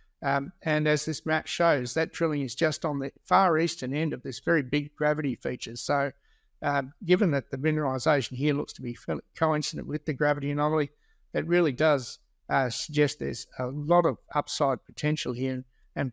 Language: English